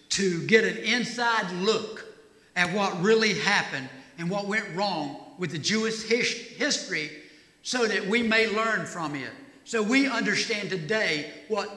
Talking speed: 150 wpm